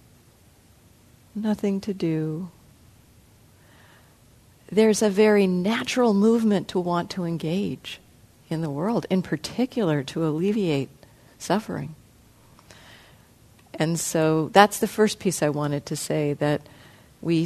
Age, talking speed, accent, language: 50-69, 110 wpm, American, English